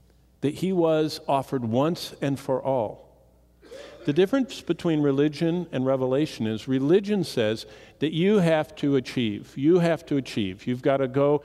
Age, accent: 50-69, American